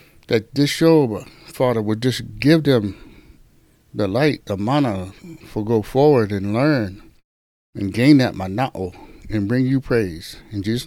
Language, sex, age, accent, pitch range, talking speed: English, male, 60-79, American, 100-150 Hz, 150 wpm